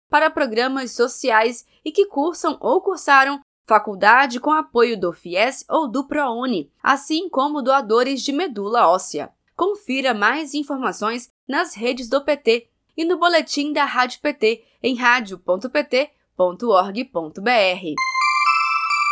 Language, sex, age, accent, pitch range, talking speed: Portuguese, female, 20-39, Brazilian, 215-290 Hz, 115 wpm